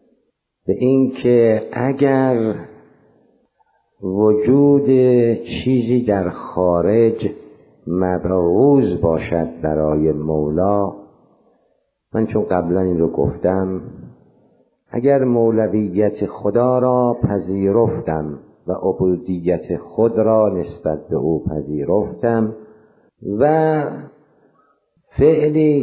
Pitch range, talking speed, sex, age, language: 95-125 Hz, 75 wpm, male, 50-69, Persian